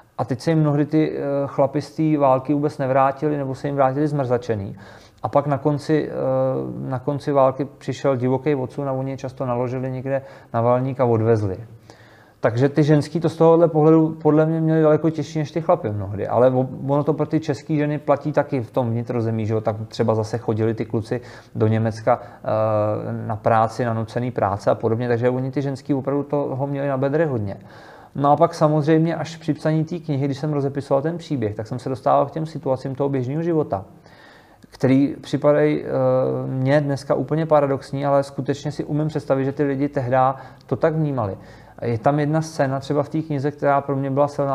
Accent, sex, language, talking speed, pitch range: native, male, Czech, 195 wpm, 125-150 Hz